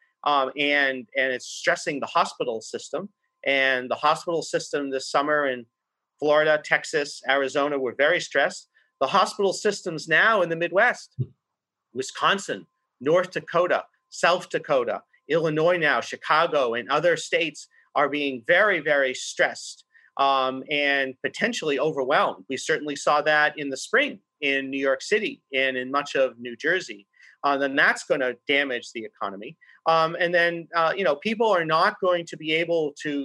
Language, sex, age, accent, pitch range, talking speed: English, male, 40-59, American, 135-180 Hz, 155 wpm